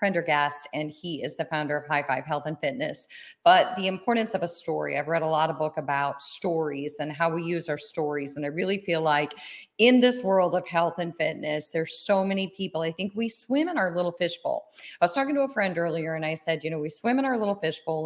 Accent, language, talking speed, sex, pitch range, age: American, English, 245 wpm, female, 160-220 Hz, 40-59